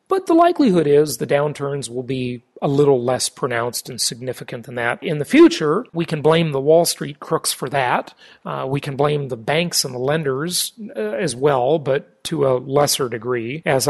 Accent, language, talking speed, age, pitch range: American, English, 200 wpm, 40-59, 135-190 Hz